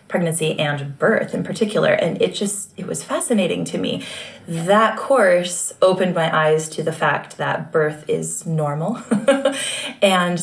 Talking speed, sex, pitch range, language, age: 150 wpm, female, 160-210 Hz, English, 20-39